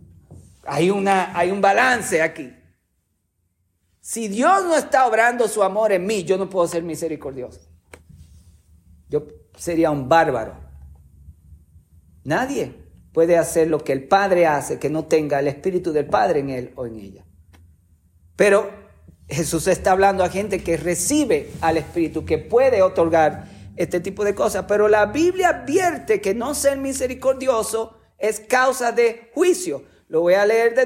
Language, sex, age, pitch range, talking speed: Spanish, male, 50-69, 135-230 Hz, 150 wpm